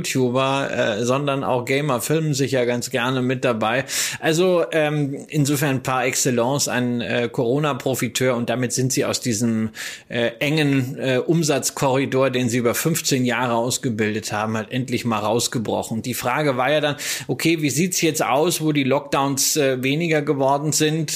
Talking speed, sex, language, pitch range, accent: 165 wpm, male, German, 130-155 Hz, German